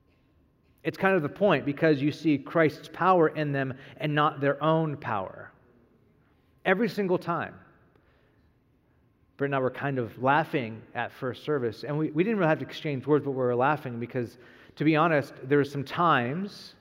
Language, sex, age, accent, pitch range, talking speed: English, male, 40-59, American, 125-160 Hz, 180 wpm